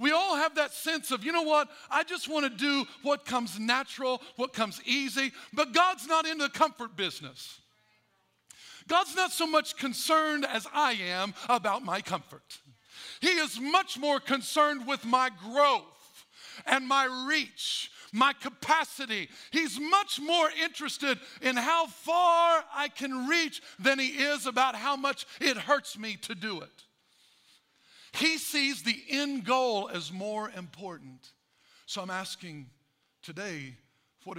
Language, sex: English, male